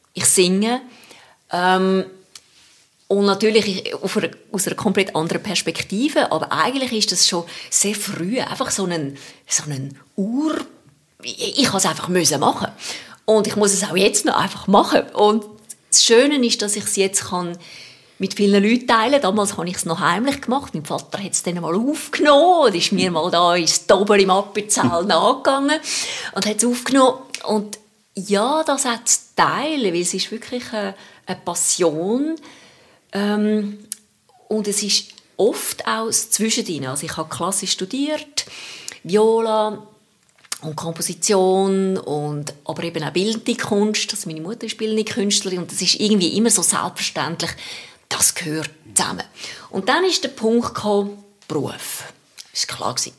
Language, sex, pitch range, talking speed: German, female, 175-225 Hz, 155 wpm